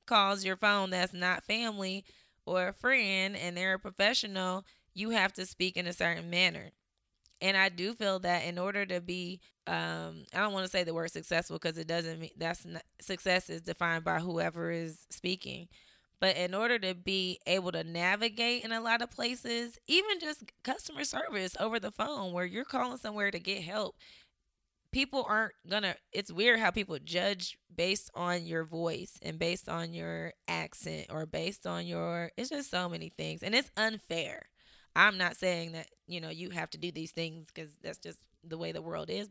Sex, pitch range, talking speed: female, 165-200 Hz, 195 wpm